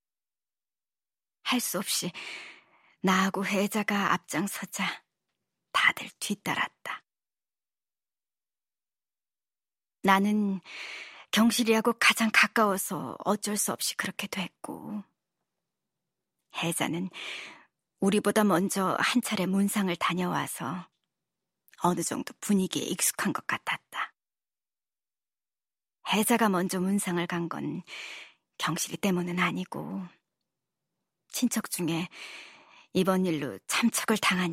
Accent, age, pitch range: native, 40-59, 175-205 Hz